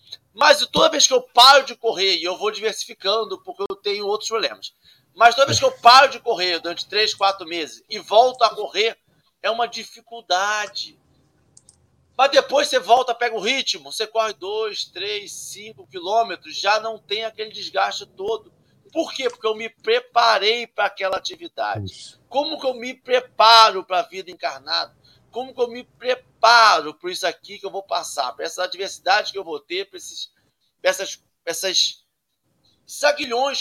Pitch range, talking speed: 195-275 Hz, 175 wpm